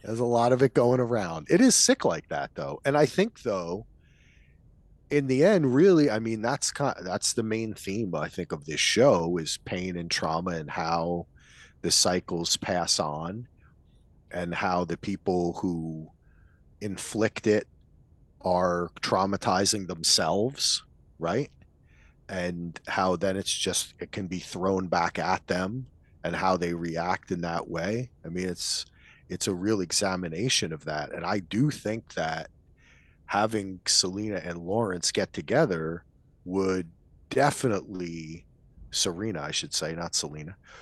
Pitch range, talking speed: 85-110 Hz, 150 wpm